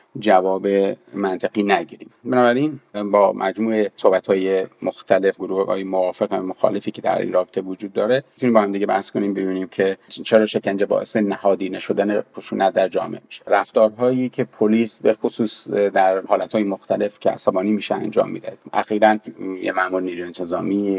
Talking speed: 155 wpm